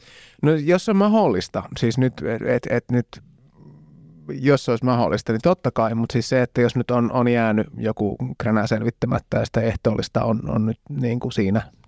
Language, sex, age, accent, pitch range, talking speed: Finnish, male, 30-49, native, 110-130 Hz, 185 wpm